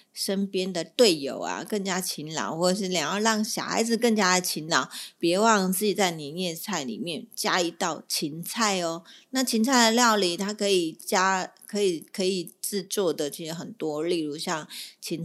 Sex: female